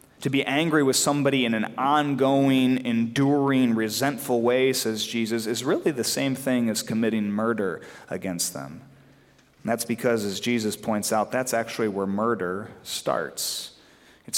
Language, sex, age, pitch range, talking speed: English, male, 30-49, 110-140 Hz, 150 wpm